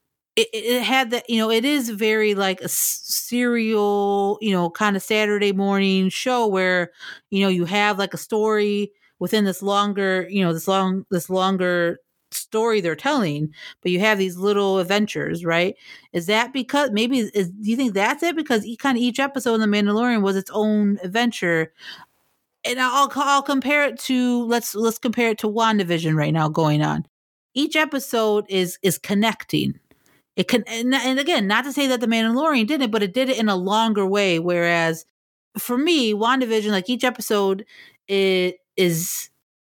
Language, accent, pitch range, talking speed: English, American, 185-230 Hz, 180 wpm